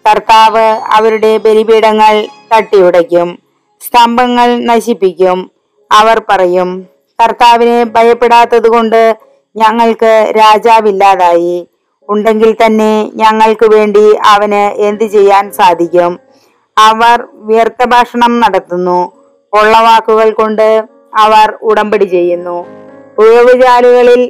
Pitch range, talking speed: 210-240 Hz, 75 wpm